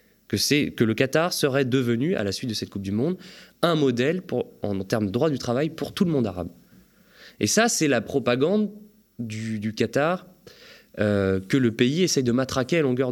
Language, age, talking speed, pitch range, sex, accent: French, 20-39, 210 wpm, 105-145 Hz, male, French